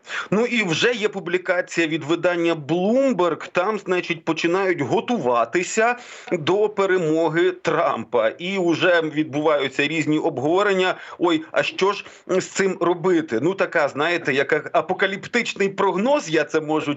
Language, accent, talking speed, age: Ukrainian, native, 125 wpm, 40-59